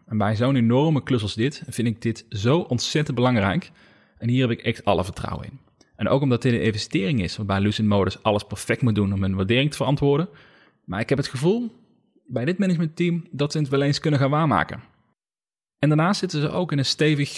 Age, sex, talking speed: 30-49, male, 220 wpm